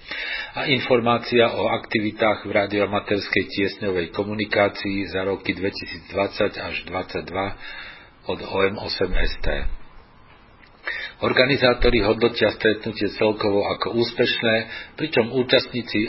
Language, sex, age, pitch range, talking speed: Slovak, male, 50-69, 100-115 Hz, 85 wpm